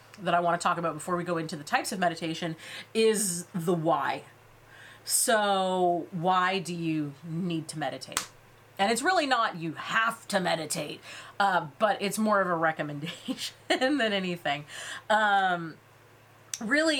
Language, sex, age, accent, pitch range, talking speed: English, female, 30-49, American, 165-205 Hz, 150 wpm